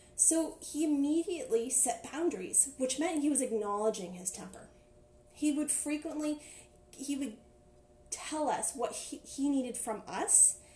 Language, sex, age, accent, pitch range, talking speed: English, female, 10-29, American, 230-295 Hz, 140 wpm